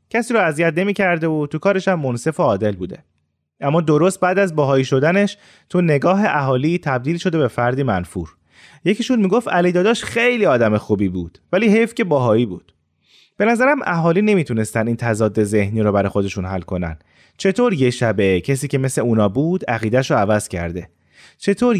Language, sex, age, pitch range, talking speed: Persian, male, 30-49, 110-180 Hz, 175 wpm